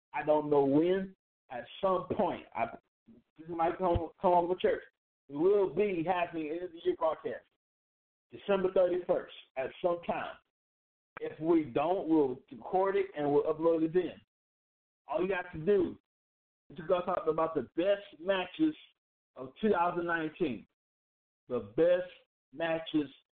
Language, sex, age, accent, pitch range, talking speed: English, male, 50-69, American, 155-200 Hz, 155 wpm